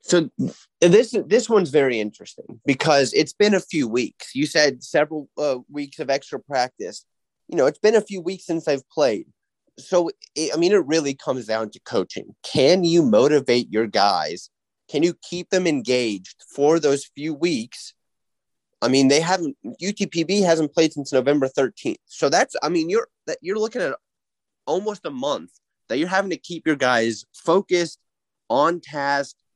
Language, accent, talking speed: English, American, 170 wpm